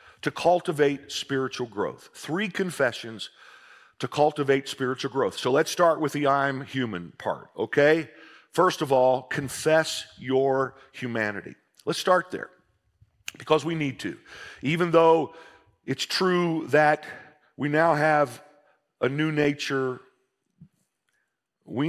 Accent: American